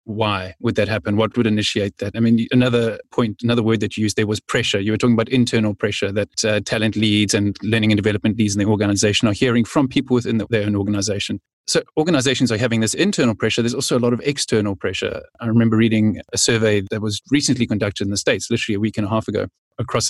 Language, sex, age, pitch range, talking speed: English, male, 30-49, 105-125 Hz, 240 wpm